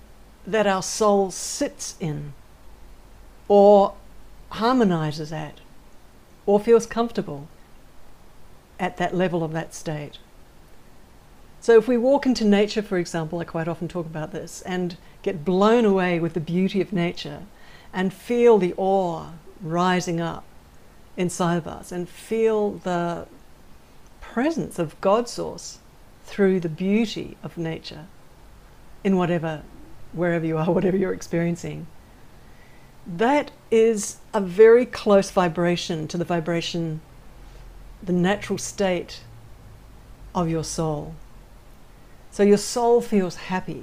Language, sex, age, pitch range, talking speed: English, female, 60-79, 165-205 Hz, 120 wpm